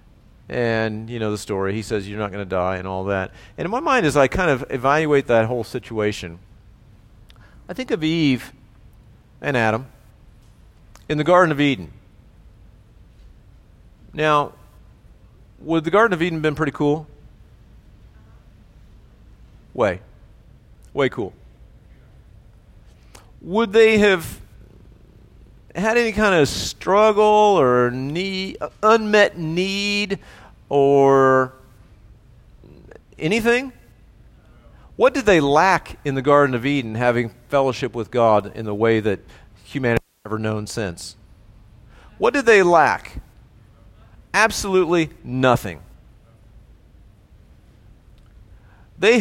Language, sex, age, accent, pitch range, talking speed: English, male, 40-59, American, 105-160 Hz, 115 wpm